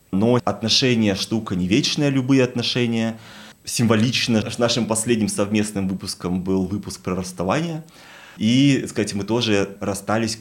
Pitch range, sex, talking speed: 100-120 Hz, male, 120 wpm